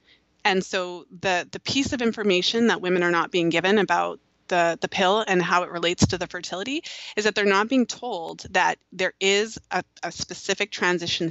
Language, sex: English, female